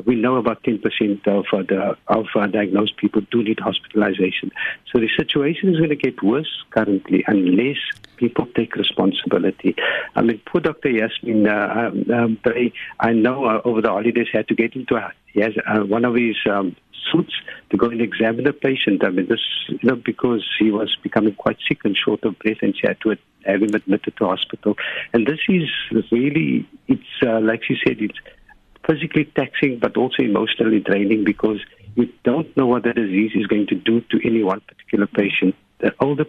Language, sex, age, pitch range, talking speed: English, male, 60-79, 105-120 Hz, 195 wpm